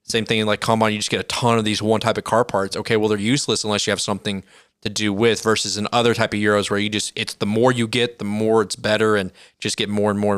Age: 20-39